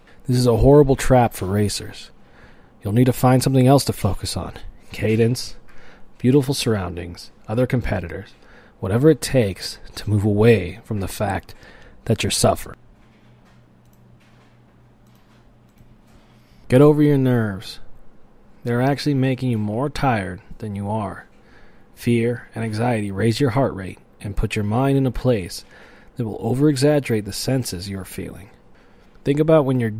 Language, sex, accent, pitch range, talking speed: English, male, American, 105-130 Hz, 140 wpm